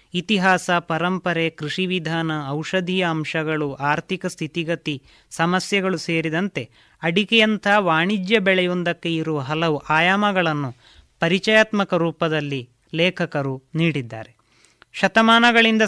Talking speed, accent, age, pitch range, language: 80 wpm, native, 30-49, 160-190 Hz, Kannada